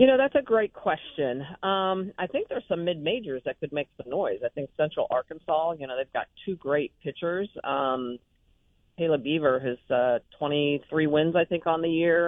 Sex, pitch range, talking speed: female, 135-170 Hz, 195 wpm